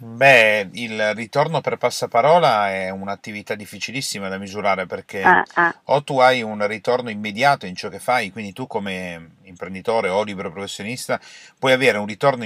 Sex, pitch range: male, 100-130 Hz